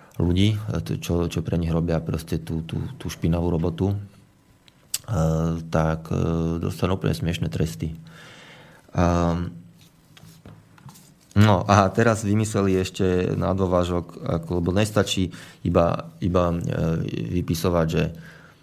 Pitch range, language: 80-95 Hz, Slovak